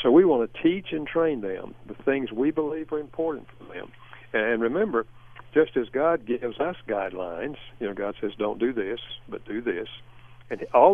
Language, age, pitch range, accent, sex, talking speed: English, 60-79, 115-155 Hz, American, male, 195 wpm